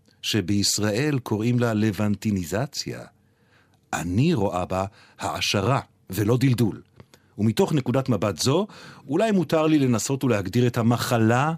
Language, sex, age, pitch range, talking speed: Hebrew, male, 50-69, 105-135 Hz, 110 wpm